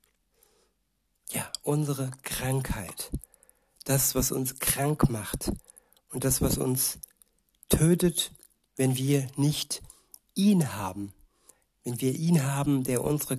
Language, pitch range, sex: German, 130-145 Hz, male